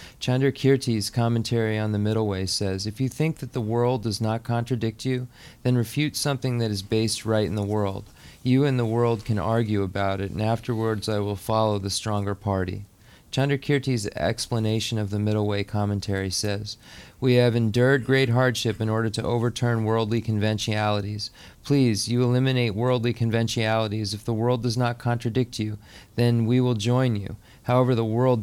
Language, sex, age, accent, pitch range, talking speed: English, male, 30-49, American, 105-120 Hz, 175 wpm